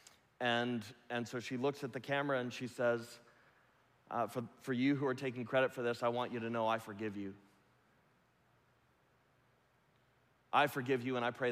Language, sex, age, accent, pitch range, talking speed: English, male, 30-49, American, 105-130 Hz, 180 wpm